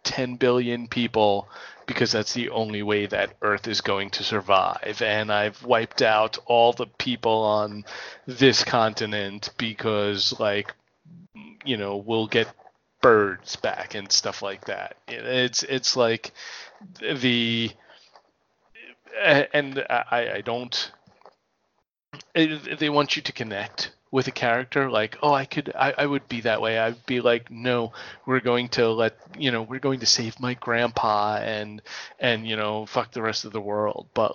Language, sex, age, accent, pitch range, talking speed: English, male, 30-49, American, 105-130 Hz, 155 wpm